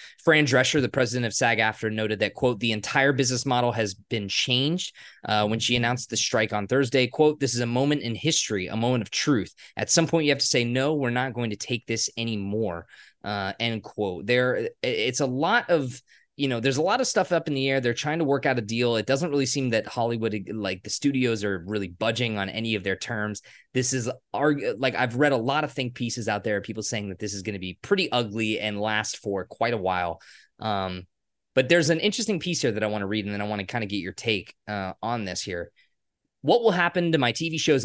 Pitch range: 105-140 Hz